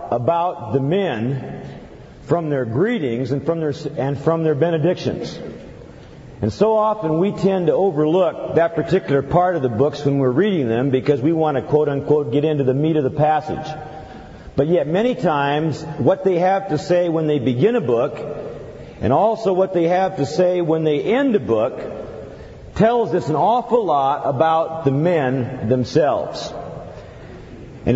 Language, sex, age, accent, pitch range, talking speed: English, male, 50-69, American, 140-195 Hz, 170 wpm